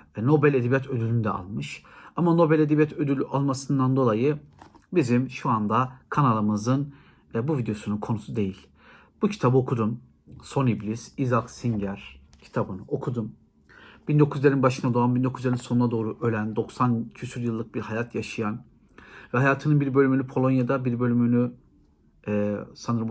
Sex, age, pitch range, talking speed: male, 50-69, 110-130 Hz, 130 wpm